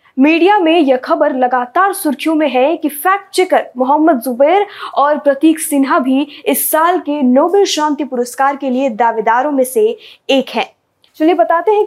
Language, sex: Hindi, female